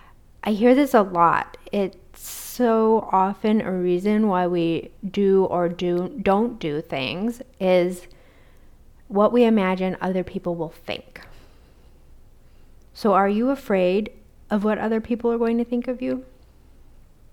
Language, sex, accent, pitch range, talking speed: English, female, American, 175-210 Hz, 140 wpm